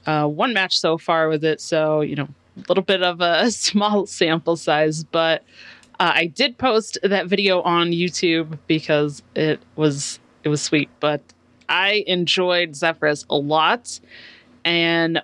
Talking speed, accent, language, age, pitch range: 160 wpm, American, English, 30-49, 155-190 Hz